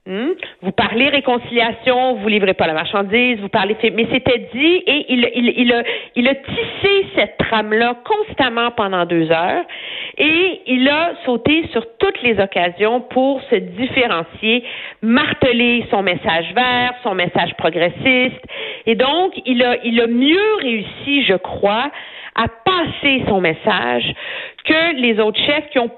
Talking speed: 155 wpm